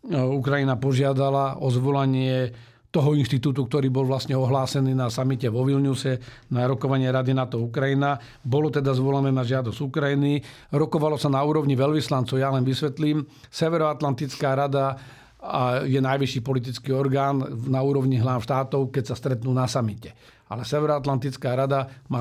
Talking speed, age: 140 wpm, 50-69